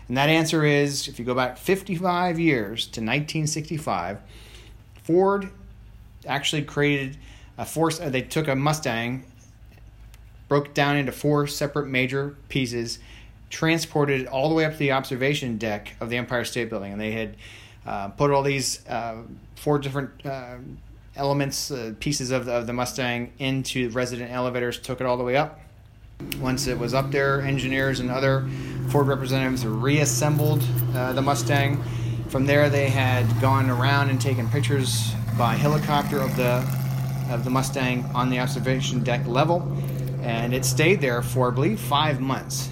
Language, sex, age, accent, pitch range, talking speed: English, male, 30-49, American, 115-140 Hz, 160 wpm